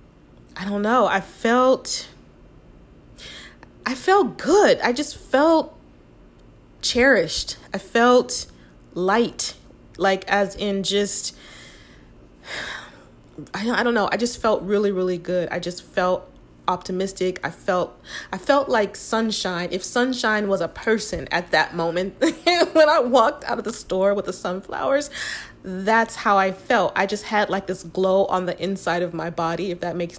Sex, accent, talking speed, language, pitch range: female, American, 145 wpm, English, 180-215 Hz